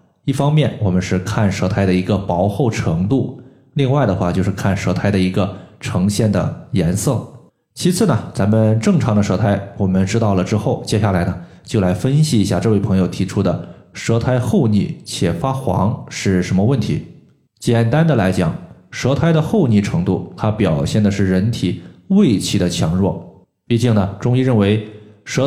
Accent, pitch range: native, 95-130 Hz